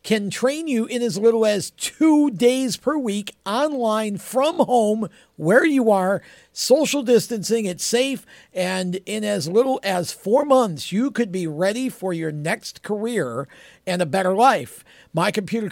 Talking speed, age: 160 wpm, 50-69